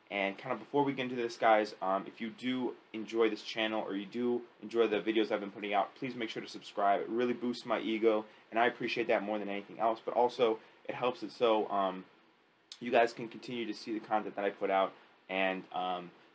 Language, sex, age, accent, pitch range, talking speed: English, male, 20-39, American, 100-115 Hz, 240 wpm